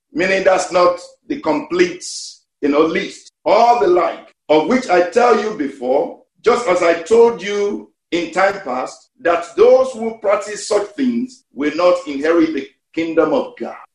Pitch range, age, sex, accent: 200-310 Hz, 50-69, male, Nigerian